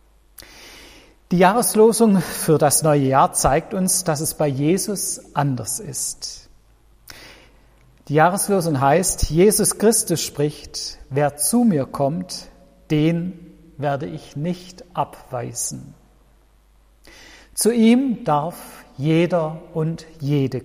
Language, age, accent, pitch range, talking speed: German, 50-69, German, 140-180 Hz, 100 wpm